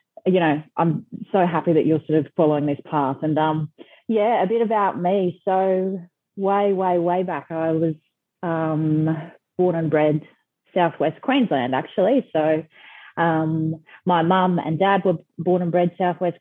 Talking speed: 160 wpm